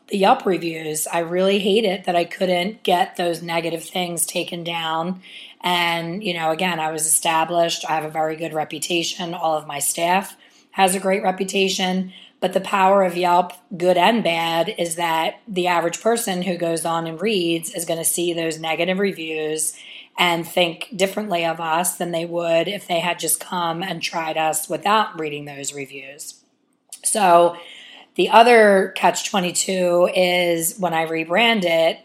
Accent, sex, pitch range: American, female, 165-185 Hz